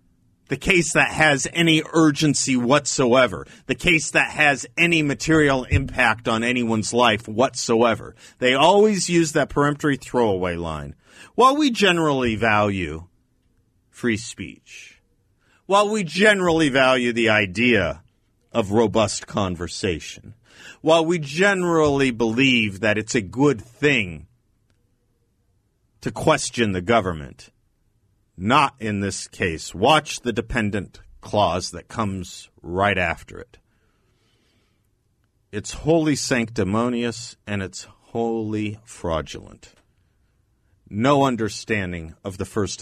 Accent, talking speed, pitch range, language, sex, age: American, 110 wpm, 100-140 Hz, English, male, 40-59